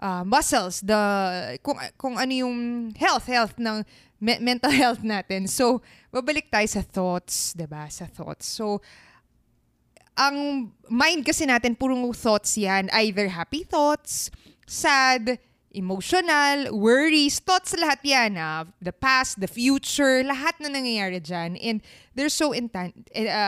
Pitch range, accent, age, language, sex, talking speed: 195-265 Hz, native, 20-39, Filipino, female, 135 wpm